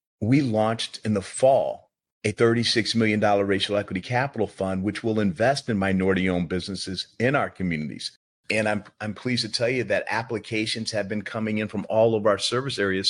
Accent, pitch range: American, 105-125 Hz